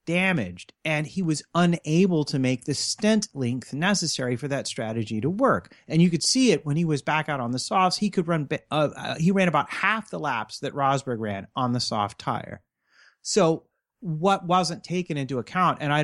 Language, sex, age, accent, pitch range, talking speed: English, male, 30-49, American, 125-165 Hz, 200 wpm